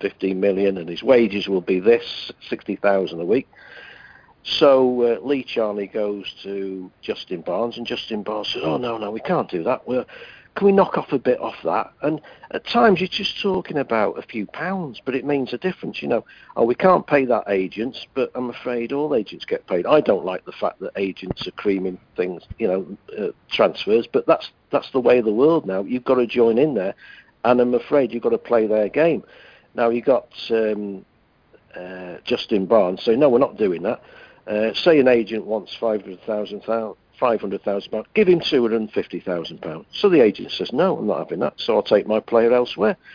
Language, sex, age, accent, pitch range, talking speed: English, male, 50-69, British, 100-135 Hz, 200 wpm